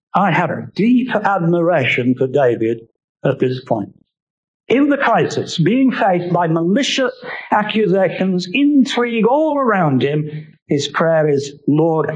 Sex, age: male, 50-69